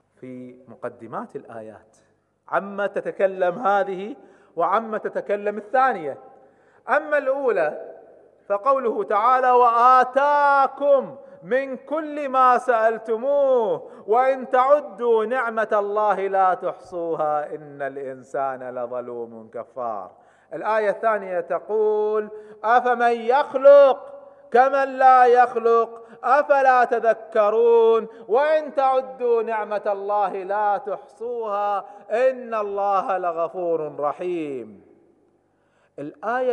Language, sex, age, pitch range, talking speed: Arabic, male, 40-59, 190-260 Hz, 80 wpm